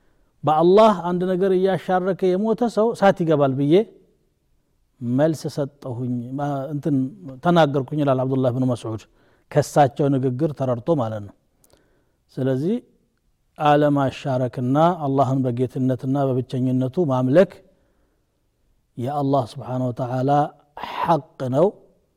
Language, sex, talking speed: Amharic, male, 65 wpm